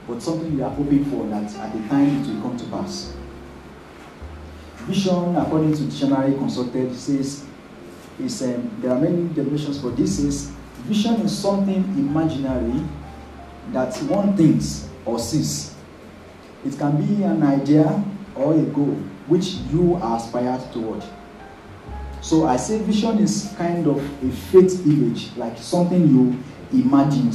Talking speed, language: 145 wpm, English